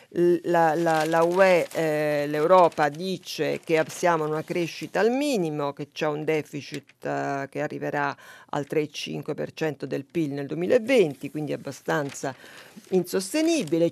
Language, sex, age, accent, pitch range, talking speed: Italian, female, 50-69, native, 150-170 Hz, 130 wpm